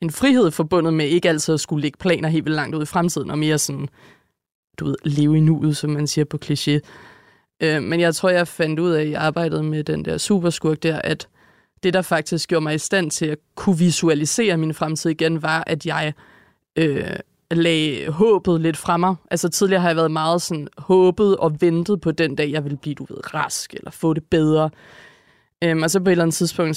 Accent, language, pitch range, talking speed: native, Danish, 155-175 Hz, 220 wpm